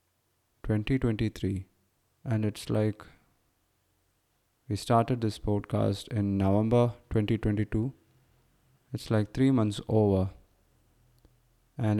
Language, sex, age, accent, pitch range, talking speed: English, male, 20-39, Indian, 100-115 Hz, 85 wpm